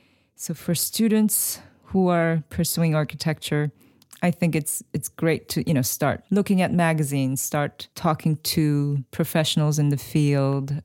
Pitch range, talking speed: 140-165 Hz, 145 wpm